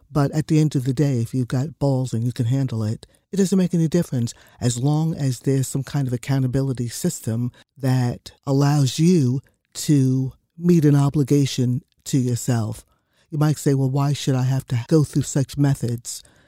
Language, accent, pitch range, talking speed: English, American, 125-155 Hz, 190 wpm